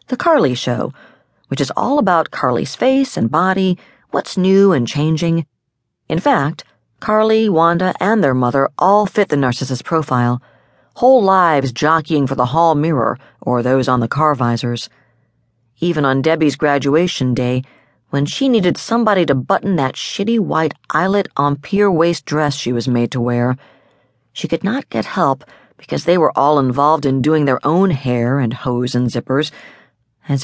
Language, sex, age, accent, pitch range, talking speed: English, female, 40-59, American, 130-170 Hz, 165 wpm